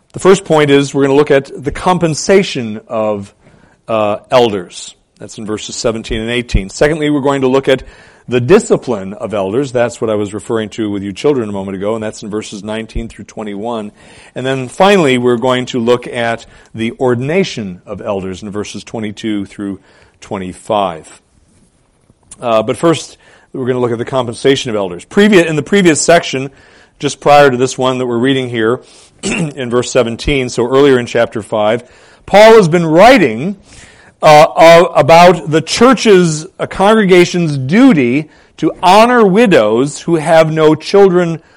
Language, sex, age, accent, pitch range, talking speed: English, male, 40-59, American, 115-165 Hz, 170 wpm